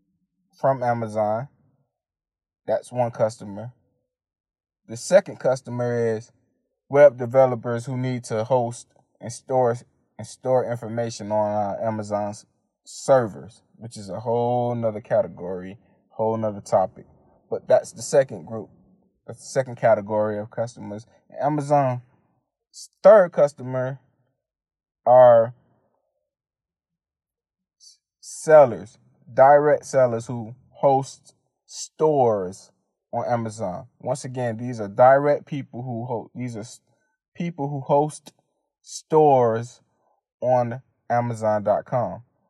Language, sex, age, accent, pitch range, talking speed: English, male, 20-39, American, 110-135 Hz, 100 wpm